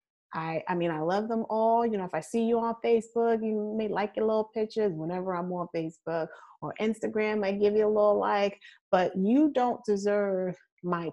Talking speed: 205 wpm